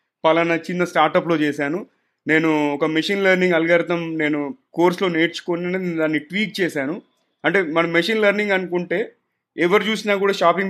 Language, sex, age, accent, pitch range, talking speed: Telugu, male, 30-49, native, 155-200 Hz, 140 wpm